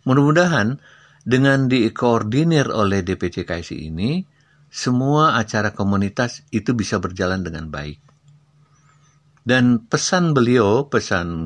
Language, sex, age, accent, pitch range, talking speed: Indonesian, male, 50-69, native, 95-145 Hz, 100 wpm